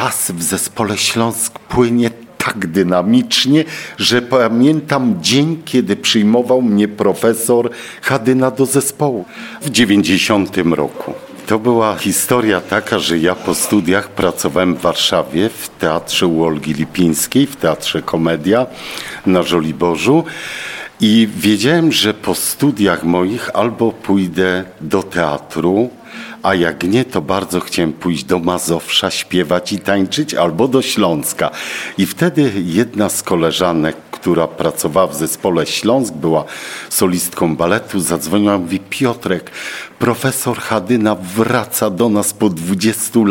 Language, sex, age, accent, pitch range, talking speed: Polish, male, 50-69, native, 90-120 Hz, 125 wpm